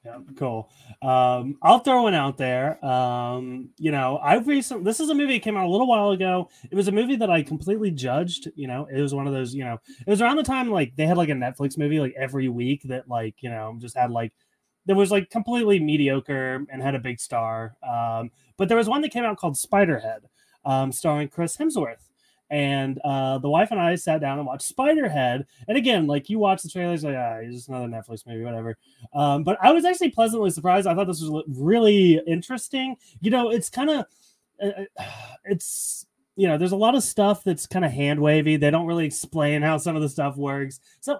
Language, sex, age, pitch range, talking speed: English, male, 30-49, 135-195 Hz, 225 wpm